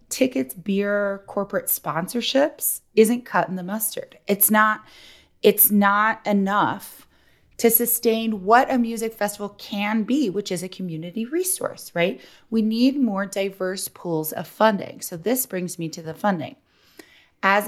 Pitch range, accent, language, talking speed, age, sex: 180-235 Hz, American, English, 145 wpm, 30-49, female